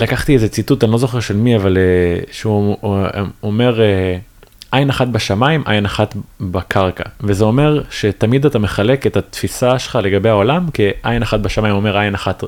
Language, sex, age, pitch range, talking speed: Hebrew, male, 20-39, 100-120 Hz, 165 wpm